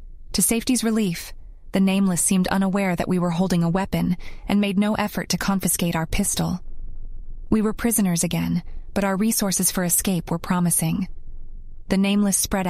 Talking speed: 165 wpm